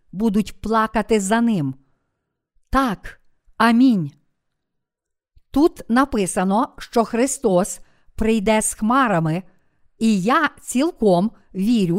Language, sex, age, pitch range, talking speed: Ukrainian, female, 50-69, 195-250 Hz, 85 wpm